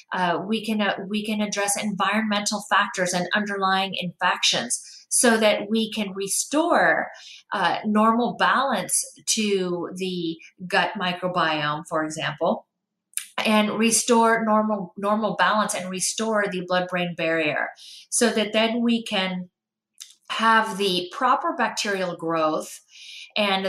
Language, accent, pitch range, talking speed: English, American, 180-220 Hz, 120 wpm